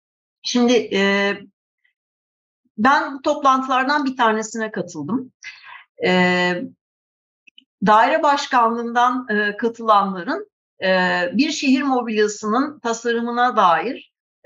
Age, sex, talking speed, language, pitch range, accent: 60-79, female, 60 wpm, Turkish, 180-255 Hz, native